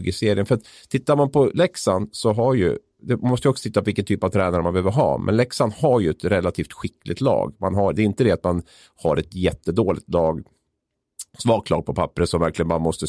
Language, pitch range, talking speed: Swedish, 90-115 Hz, 235 wpm